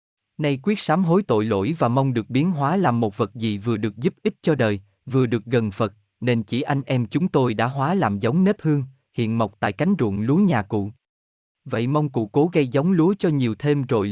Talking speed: 240 wpm